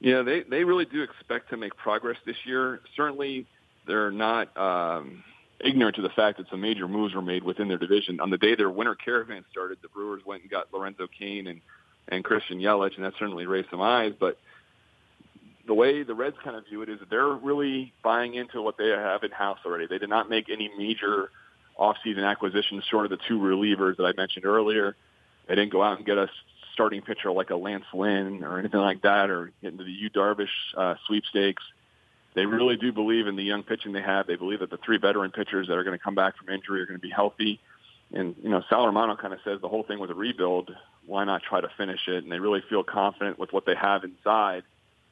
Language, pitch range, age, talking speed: English, 95-110 Hz, 40-59, 230 wpm